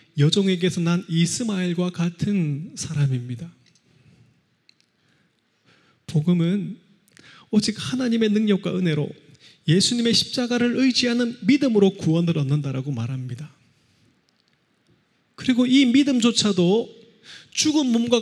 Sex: male